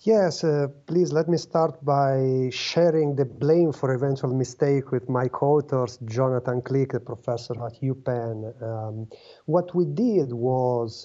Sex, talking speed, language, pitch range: male, 145 wpm, English, 120-155 Hz